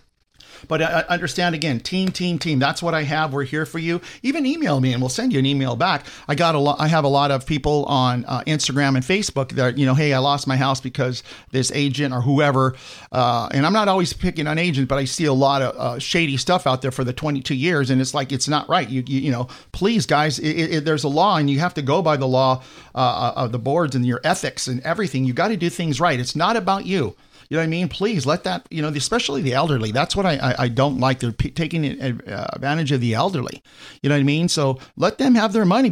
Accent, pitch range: American, 130-170 Hz